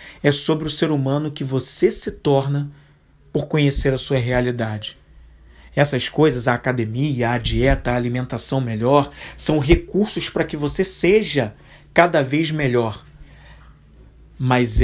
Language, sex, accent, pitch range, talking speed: Portuguese, male, Brazilian, 130-160 Hz, 135 wpm